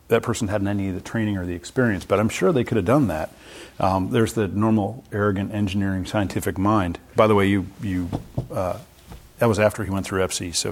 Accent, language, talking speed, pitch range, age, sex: American, English, 225 wpm, 100-120 Hz, 40-59, male